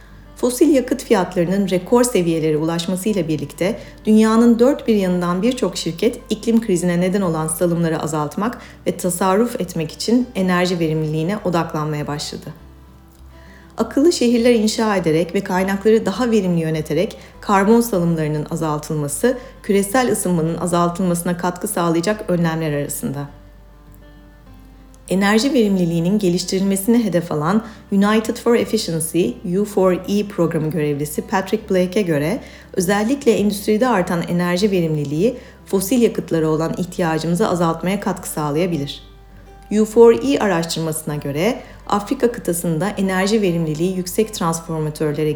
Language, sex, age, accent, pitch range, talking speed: Turkish, female, 40-59, native, 165-220 Hz, 105 wpm